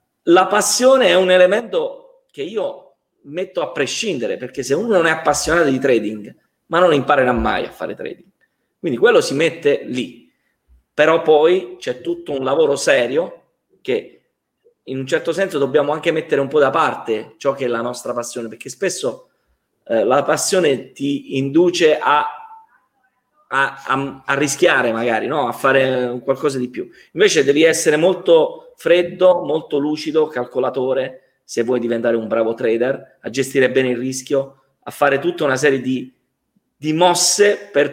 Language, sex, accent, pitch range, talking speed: Italian, male, native, 130-205 Hz, 155 wpm